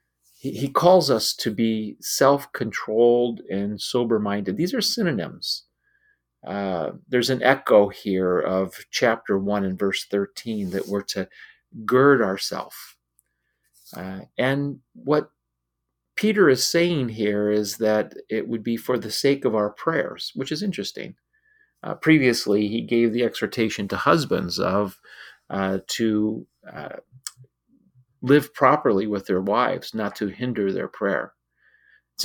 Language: English